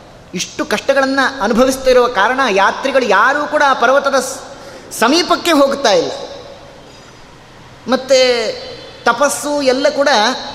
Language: Kannada